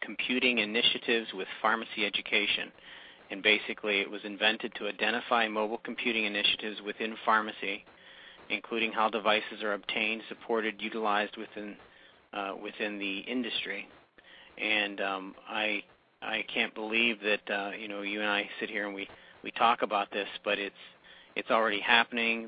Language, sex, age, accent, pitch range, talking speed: English, male, 40-59, American, 100-115 Hz, 145 wpm